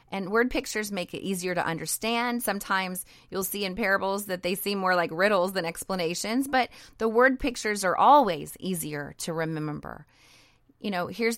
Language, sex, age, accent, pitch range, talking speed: English, female, 30-49, American, 175-220 Hz, 175 wpm